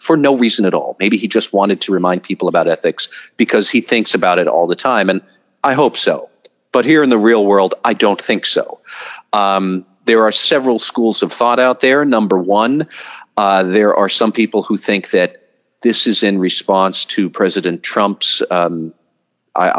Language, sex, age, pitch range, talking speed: English, male, 40-59, 90-110 Hz, 195 wpm